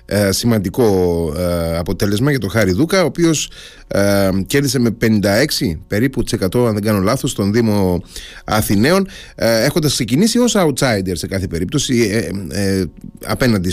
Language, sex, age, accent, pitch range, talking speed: Greek, male, 30-49, native, 100-145 Hz, 120 wpm